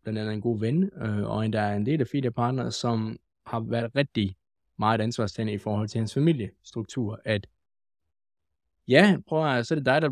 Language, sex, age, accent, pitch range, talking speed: Danish, male, 20-39, native, 105-130 Hz, 195 wpm